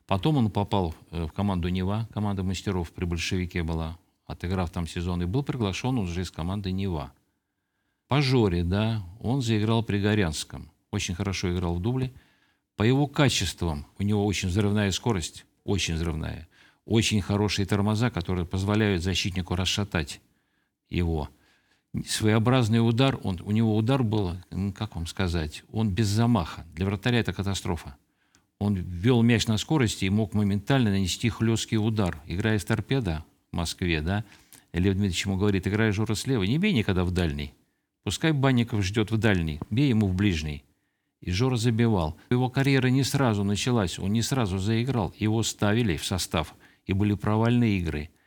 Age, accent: 50-69, native